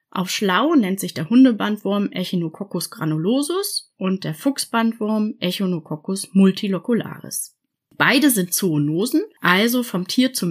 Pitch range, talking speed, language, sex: 180-250 Hz, 115 wpm, German, female